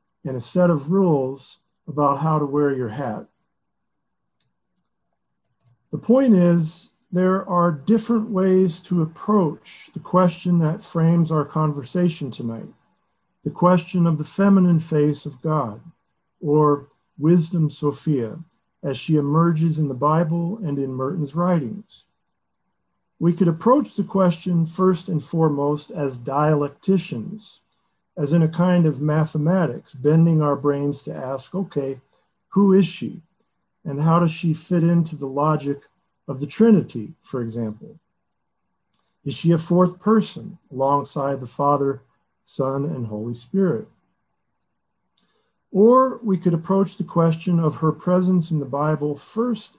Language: English